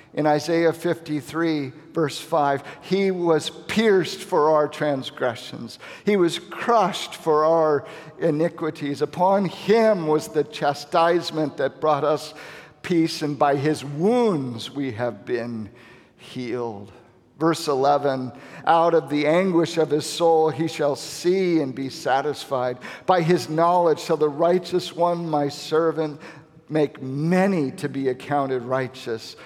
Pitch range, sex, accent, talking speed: 135-165 Hz, male, American, 130 wpm